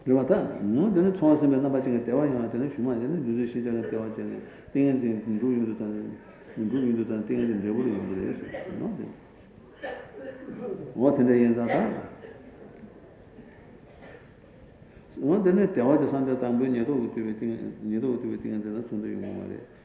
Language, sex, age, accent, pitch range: Italian, male, 60-79, Indian, 110-130 Hz